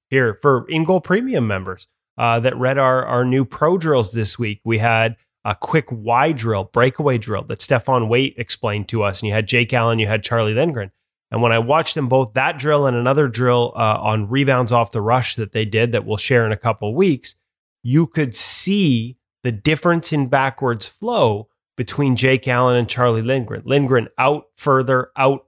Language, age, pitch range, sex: English, 20-39, 110-135 Hz, male